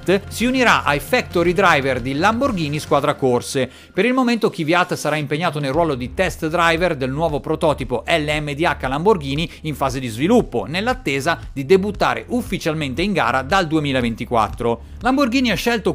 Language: Italian